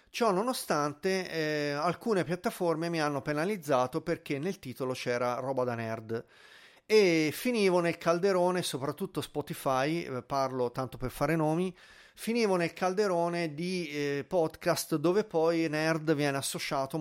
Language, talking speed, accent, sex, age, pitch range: Italian, 130 wpm, native, male, 40-59, 125-165 Hz